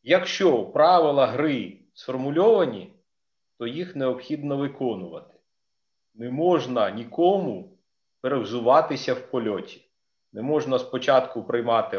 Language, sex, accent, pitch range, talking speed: Ukrainian, male, native, 120-155 Hz, 90 wpm